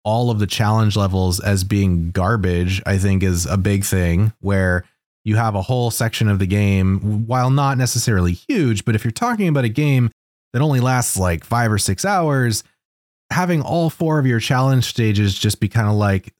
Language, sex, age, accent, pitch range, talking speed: English, male, 20-39, American, 95-120 Hz, 200 wpm